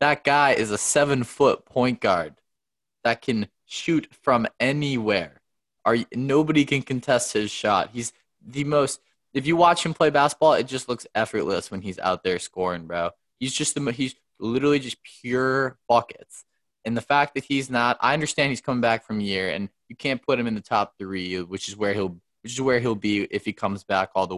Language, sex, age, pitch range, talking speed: English, male, 20-39, 100-130 Hz, 225 wpm